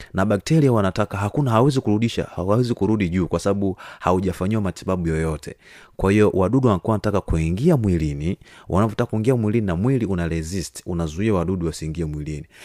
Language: Swahili